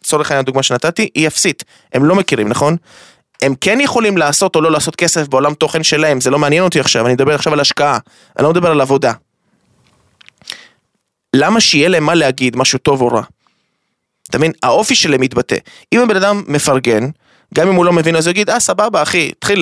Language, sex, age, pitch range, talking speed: Hebrew, male, 20-39, 140-185 Hz, 200 wpm